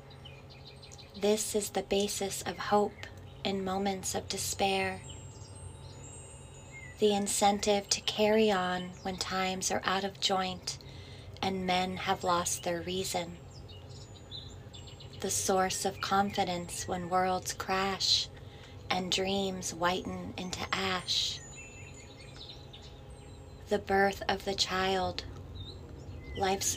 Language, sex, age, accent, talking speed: English, female, 30-49, American, 100 wpm